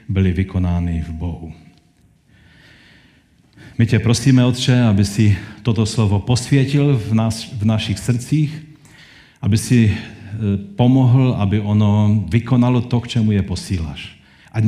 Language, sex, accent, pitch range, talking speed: Czech, male, native, 95-120 Hz, 125 wpm